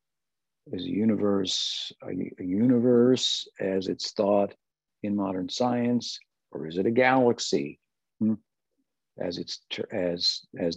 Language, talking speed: English, 125 wpm